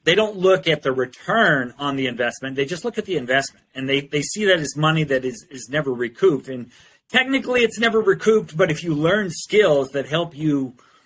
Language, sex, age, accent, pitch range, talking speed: English, male, 40-59, American, 135-165 Hz, 215 wpm